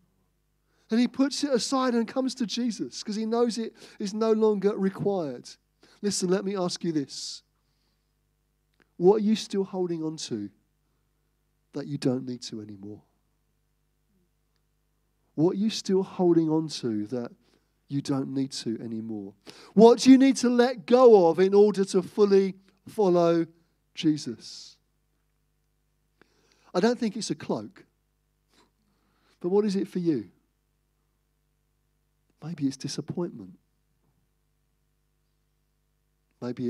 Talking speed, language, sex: 130 wpm, English, male